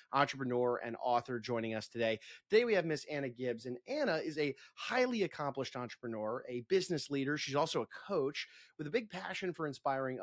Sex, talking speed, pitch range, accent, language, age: male, 190 wpm, 120-150 Hz, American, English, 30-49